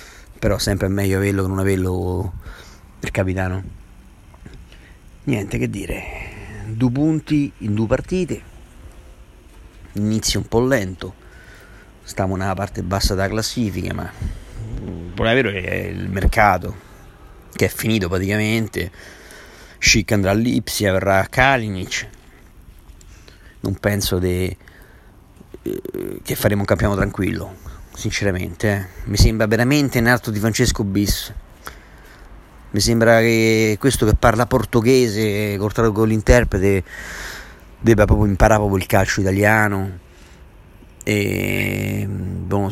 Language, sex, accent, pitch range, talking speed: Italian, male, native, 95-110 Hz, 115 wpm